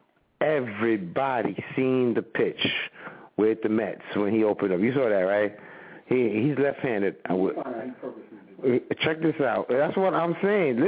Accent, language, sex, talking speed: American, English, male, 150 wpm